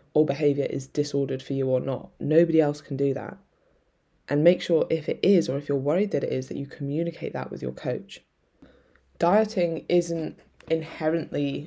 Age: 10-29